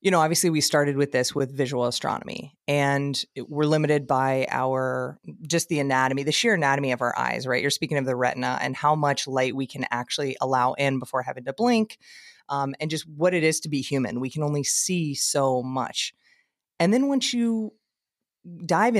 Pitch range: 135-170 Hz